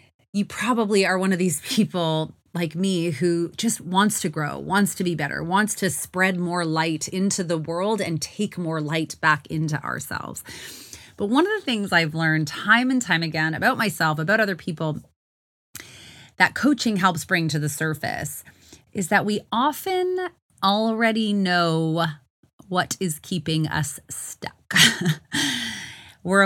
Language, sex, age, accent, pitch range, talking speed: English, female, 30-49, American, 160-195 Hz, 155 wpm